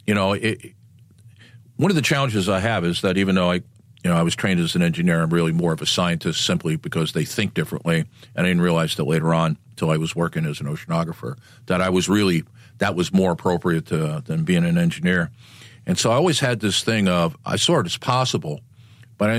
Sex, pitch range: male, 95-125 Hz